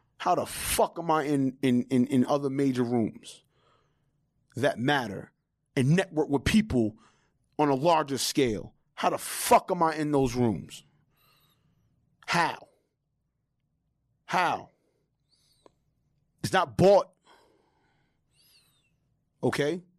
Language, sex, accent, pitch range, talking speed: English, male, American, 130-160 Hz, 105 wpm